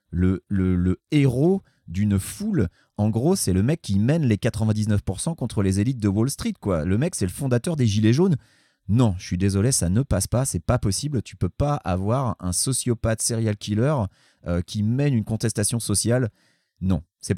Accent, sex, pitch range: French, male, 95-125 Hz